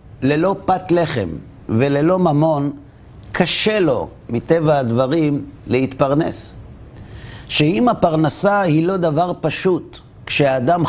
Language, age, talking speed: Hebrew, 60-79, 95 wpm